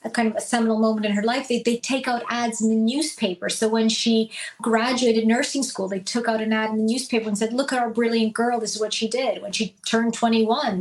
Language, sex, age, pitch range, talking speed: English, female, 30-49, 215-235 Hz, 260 wpm